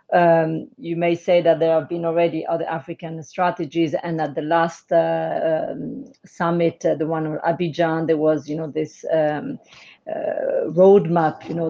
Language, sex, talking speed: English, female, 175 wpm